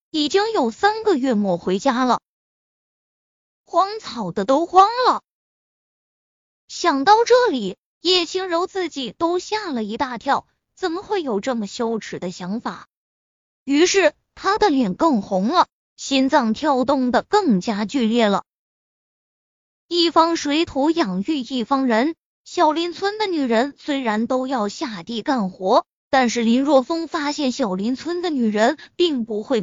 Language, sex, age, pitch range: Chinese, female, 20-39, 230-350 Hz